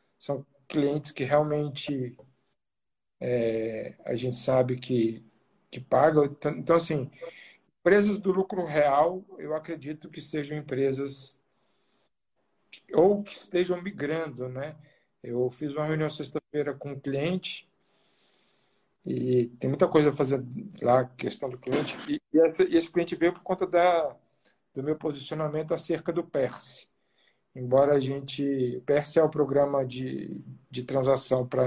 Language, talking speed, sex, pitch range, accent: Portuguese, 125 wpm, male, 135-175 Hz, Brazilian